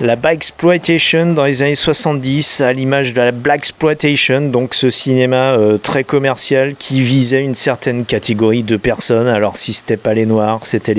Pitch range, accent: 115-145 Hz, French